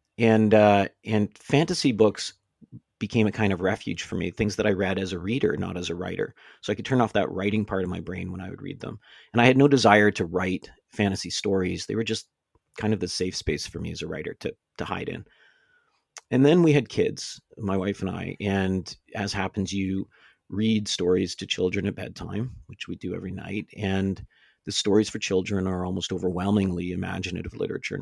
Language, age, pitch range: English, 40-59, 95-110 Hz